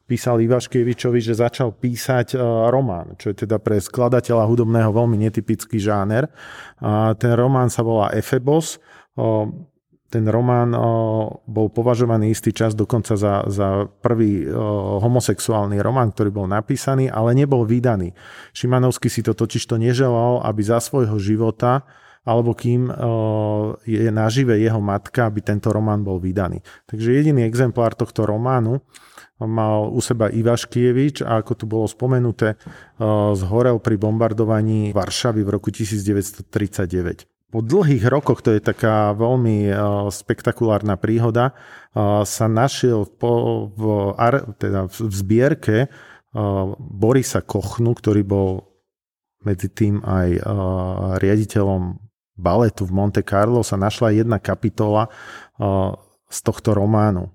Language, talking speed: Slovak, 125 wpm